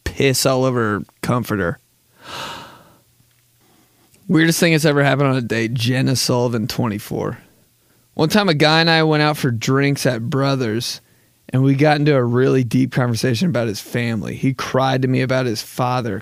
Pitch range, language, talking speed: 115-135 Hz, English, 170 wpm